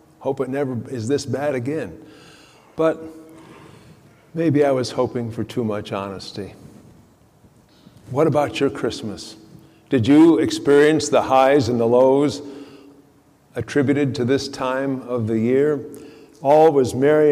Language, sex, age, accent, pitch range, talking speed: English, male, 50-69, American, 130-150 Hz, 130 wpm